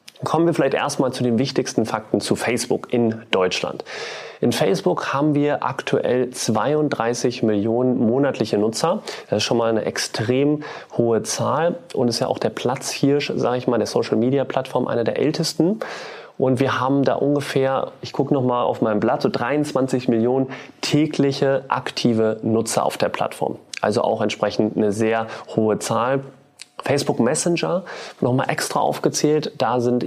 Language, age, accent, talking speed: German, 30-49, German, 155 wpm